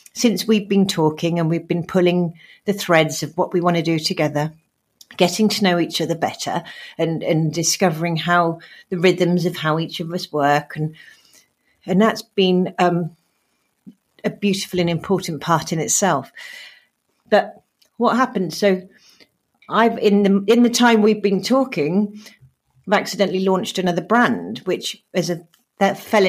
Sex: female